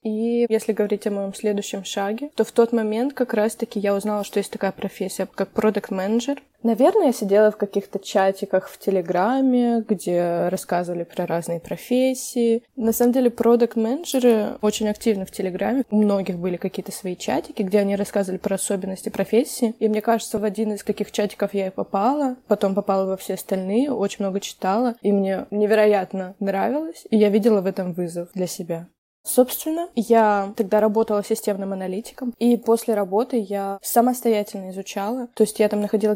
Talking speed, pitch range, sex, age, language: 170 wpm, 195-225 Hz, female, 20-39, Russian